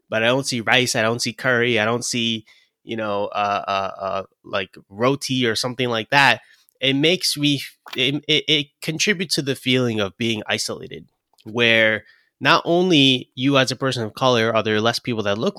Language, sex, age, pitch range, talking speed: English, male, 20-39, 105-135 Hz, 195 wpm